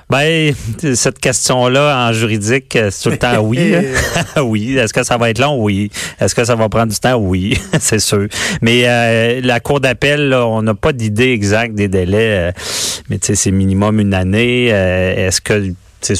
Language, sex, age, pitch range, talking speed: French, male, 30-49, 100-120 Hz, 200 wpm